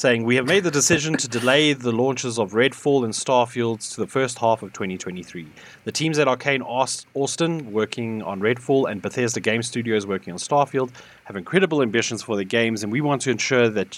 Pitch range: 105-135 Hz